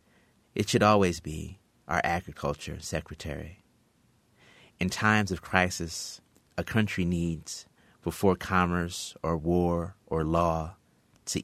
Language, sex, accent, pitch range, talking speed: English, male, American, 80-95 Hz, 110 wpm